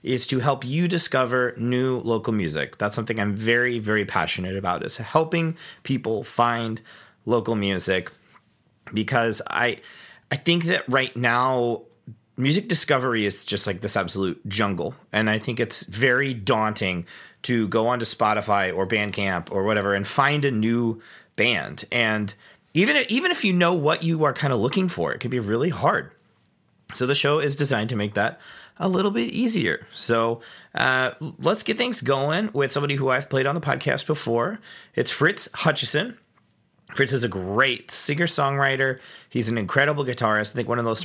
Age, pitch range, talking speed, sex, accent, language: 30-49, 105-140 Hz, 175 wpm, male, American, English